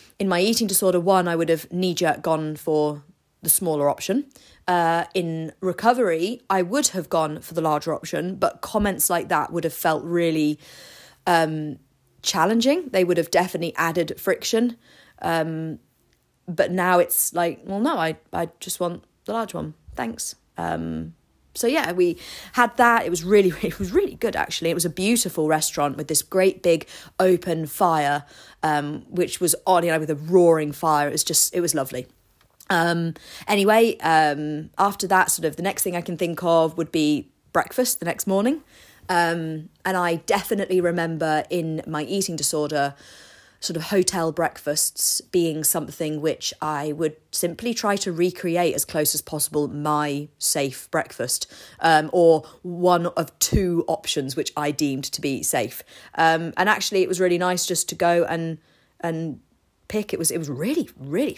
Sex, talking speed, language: female, 175 wpm, English